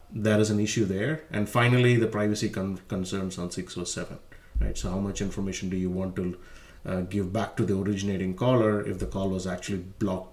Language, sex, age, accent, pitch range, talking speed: English, male, 30-49, Indian, 95-115 Hz, 205 wpm